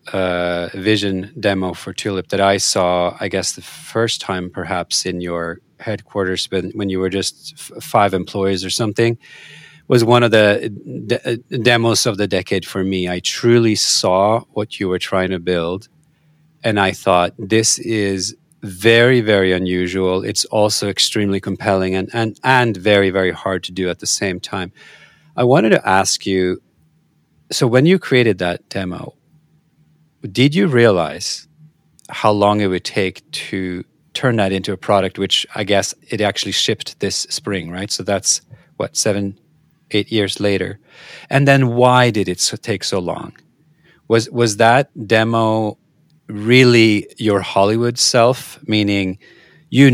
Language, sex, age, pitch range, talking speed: English, male, 40-59, 95-120 Hz, 155 wpm